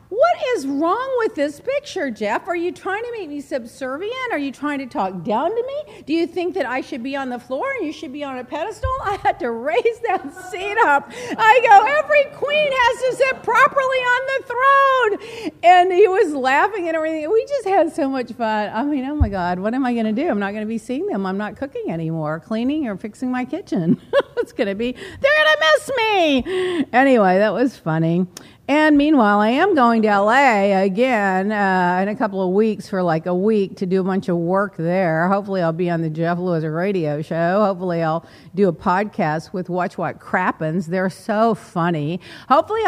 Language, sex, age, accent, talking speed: English, female, 50-69, American, 220 wpm